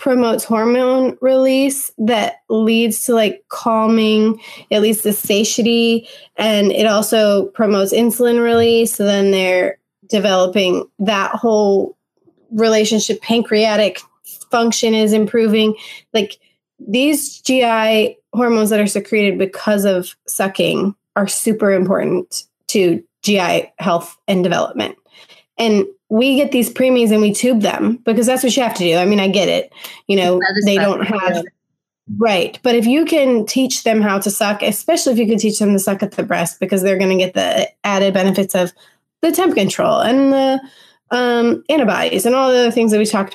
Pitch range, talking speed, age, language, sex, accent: 195-235 Hz, 165 wpm, 20-39, English, female, American